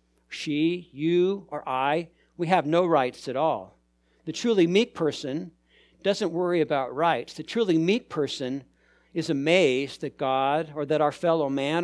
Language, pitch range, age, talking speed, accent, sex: English, 135-175 Hz, 60-79, 155 wpm, American, male